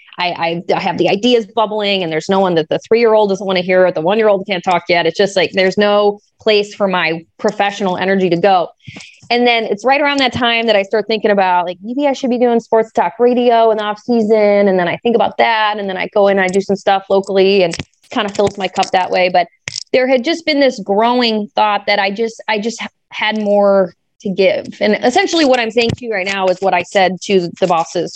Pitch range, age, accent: 190-225 Hz, 30-49, American